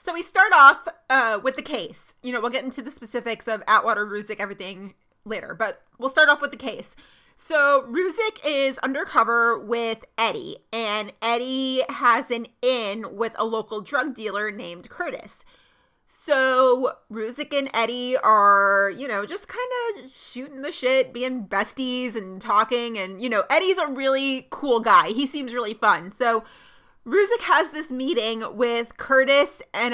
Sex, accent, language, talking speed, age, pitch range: female, American, English, 165 wpm, 30-49, 225-280 Hz